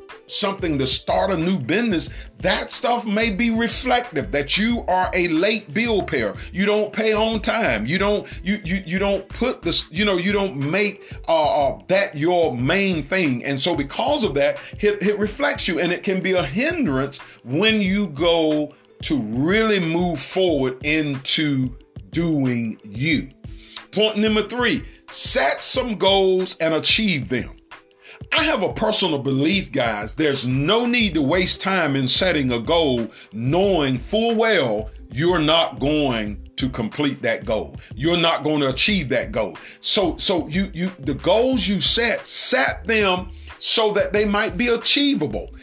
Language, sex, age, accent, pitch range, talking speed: English, male, 40-59, American, 145-220 Hz, 165 wpm